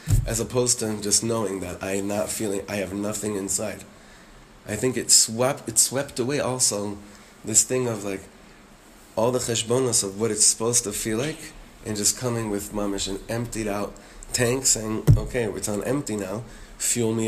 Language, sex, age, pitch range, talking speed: English, male, 30-49, 100-125 Hz, 185 wpm